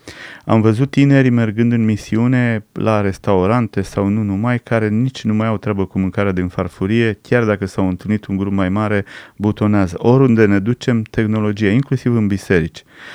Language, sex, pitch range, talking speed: Romanian, male, 105-125 Hz, 170 wpm